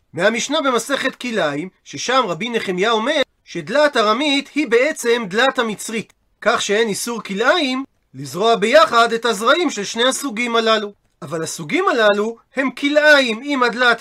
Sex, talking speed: male, 135 wpm